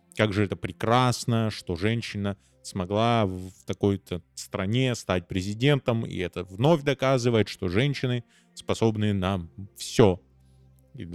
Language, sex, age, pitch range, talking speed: Russian, male, 20-39, 100-135 Hz, 120 wpm